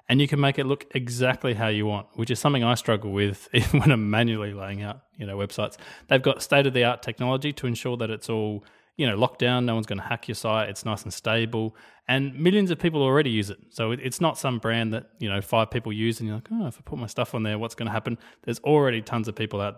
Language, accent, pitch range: English, Australian, 110-135 Hz